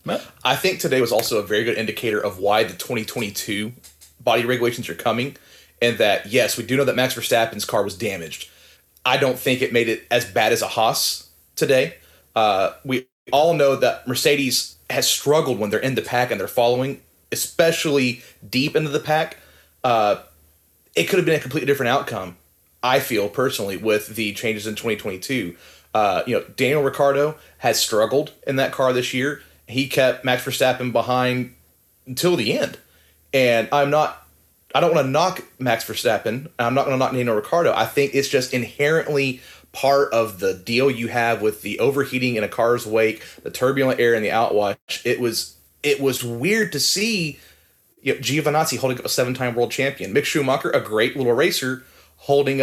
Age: 30-49